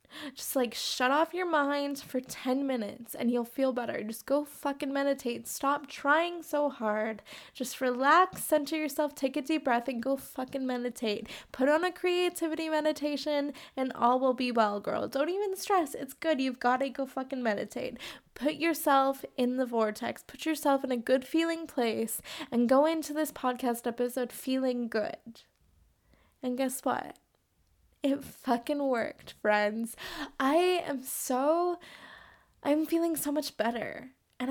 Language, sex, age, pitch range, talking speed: English, female, 20-39, 240-290 Hz, 160 wpm